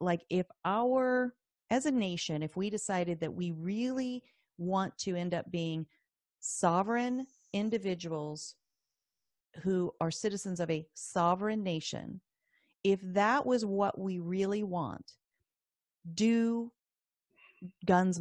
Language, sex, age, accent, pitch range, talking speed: English, female, 40-59, American, 160-190 Hz, 115 wpm